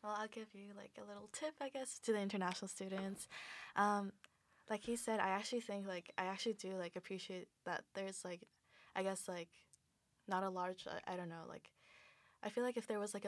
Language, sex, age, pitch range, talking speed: English, female, 20-39, 180-200 Hz, 215 wpm